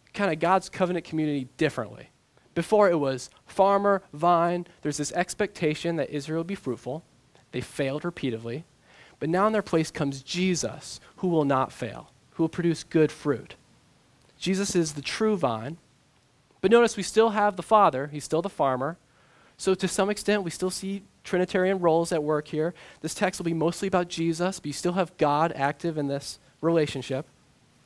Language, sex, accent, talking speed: English, male, American, 175 wpm